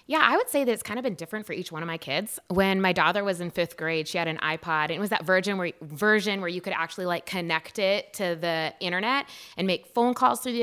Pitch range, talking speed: 180-230 Hz, 275 wpm